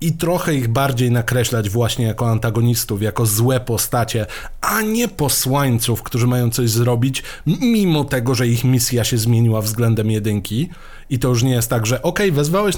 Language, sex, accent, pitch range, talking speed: Polish, male, native, 115-155 Hz, 170 wpm